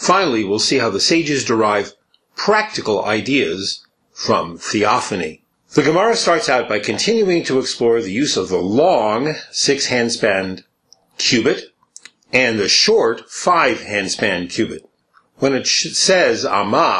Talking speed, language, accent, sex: 125 wpm, English, American, male